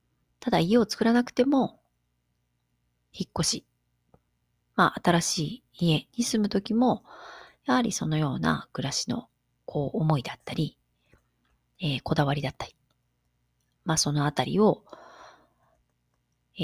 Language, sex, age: Japanese, female, 40-59